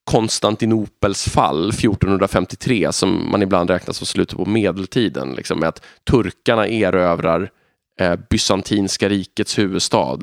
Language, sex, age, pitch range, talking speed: Swedish, male, 20-39, 95-115 Hz, 115 wpm